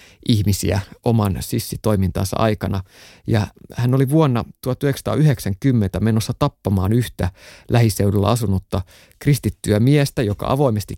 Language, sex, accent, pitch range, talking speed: Finnish, male, native, 100-140 Hz, 100 wpm